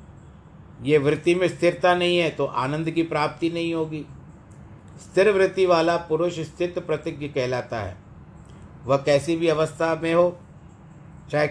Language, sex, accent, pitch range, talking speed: Hindi, male, native, 140-175 Hz, 140 wpm